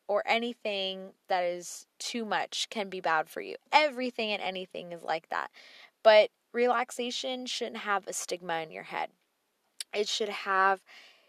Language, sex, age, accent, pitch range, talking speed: English, female, 10-29, American, 180-215 Hz, 155 wpm